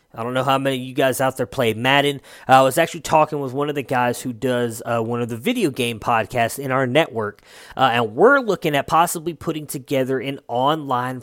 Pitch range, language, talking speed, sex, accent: 125-160 Hz, English, 235 wpm, male, American